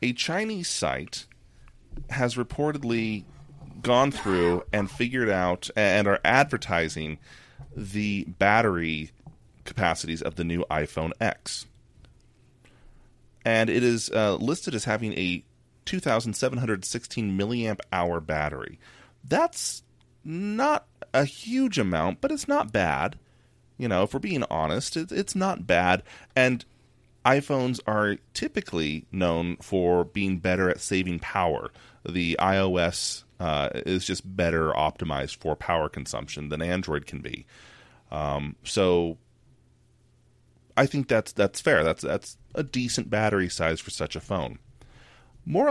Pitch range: 85-125 Hz